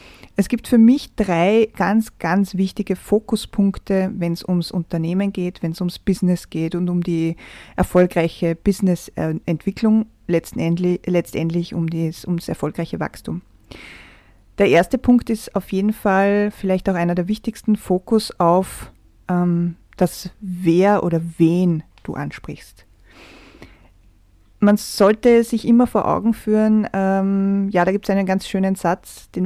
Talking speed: 140 wpm